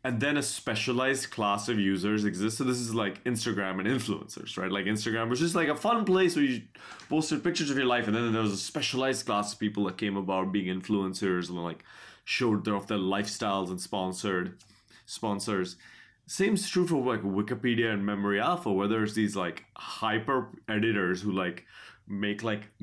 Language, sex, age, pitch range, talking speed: English, male, 20-39, 100-120 Hz, 190 wpm